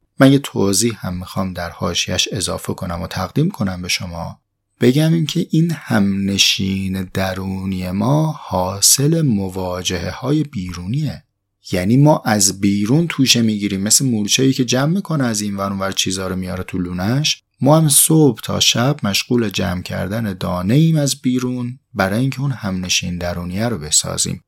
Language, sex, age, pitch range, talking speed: Persian, male, 30-49, 90-125 Hz, 155 wpm